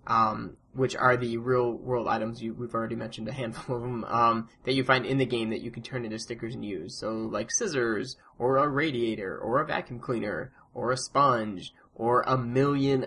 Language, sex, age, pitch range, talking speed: English, male, 20-39, 115-140 Hz, 205 wpm